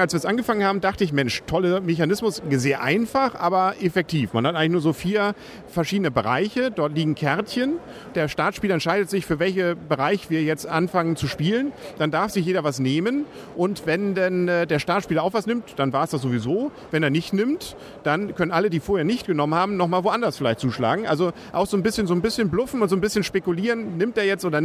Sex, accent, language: male, German, German